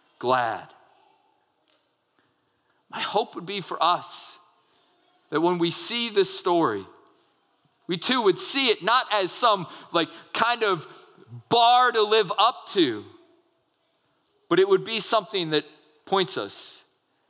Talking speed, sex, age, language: 130 wpm, male, 40-59, English